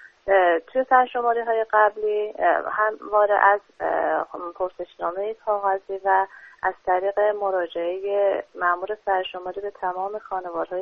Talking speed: 95 wpm